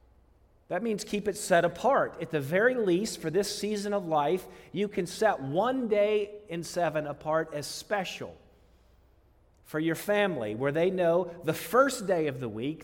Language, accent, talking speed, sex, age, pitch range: English, American, 175 wpm, male, 40-59, 110-160 Hz